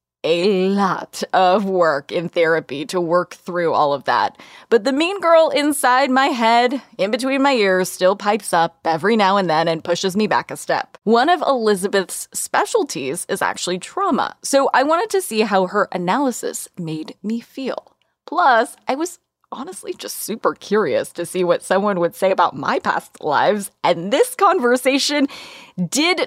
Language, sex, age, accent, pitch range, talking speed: English, female, 20-39, American, 185-255 Hz, 170 wpm